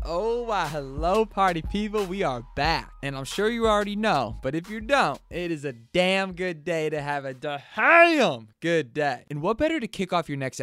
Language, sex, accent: English, male, American